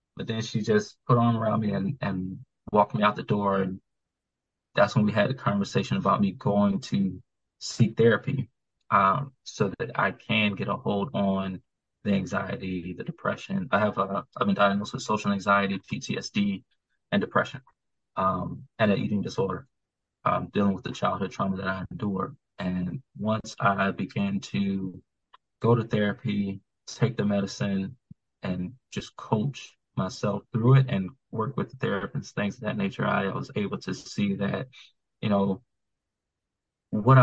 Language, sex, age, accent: English, male, 20-39, American